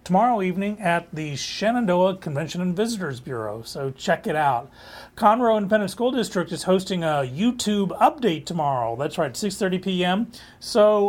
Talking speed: 150 wpm